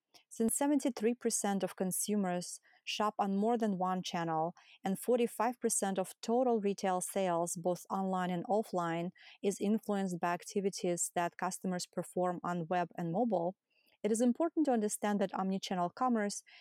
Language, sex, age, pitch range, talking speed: English, female, 30-49, 175-220 Hz, 140 wpm